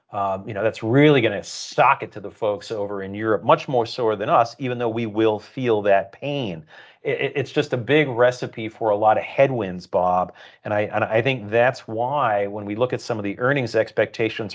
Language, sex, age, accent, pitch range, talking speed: English, male, 40-59, American, 105-125 Hz, 225 wpm